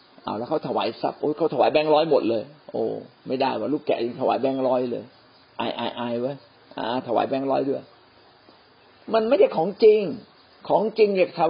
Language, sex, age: Thai, male, 50-69